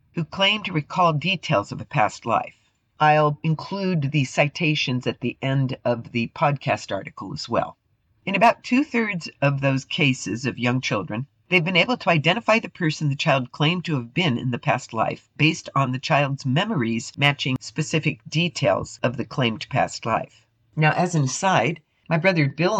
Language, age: English, 50-69